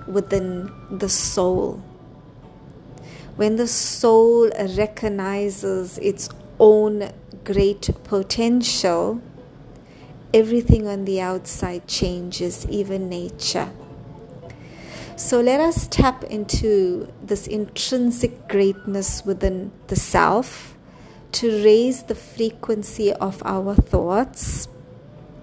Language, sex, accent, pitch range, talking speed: English, female, Indian, 190-225 Hz, 85 wpm